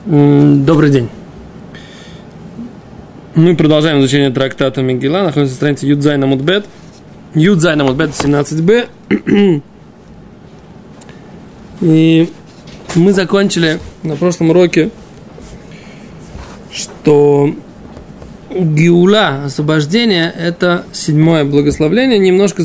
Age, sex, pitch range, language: 20-39, male, 150-190 Hz, Russian